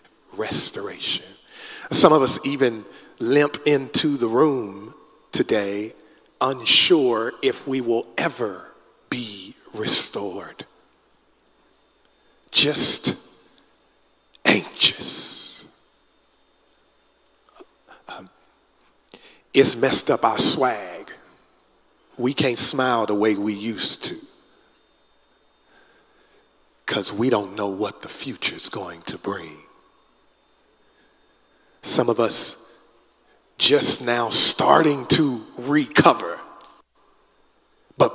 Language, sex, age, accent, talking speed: English, male, 40-59, American, 85 wpm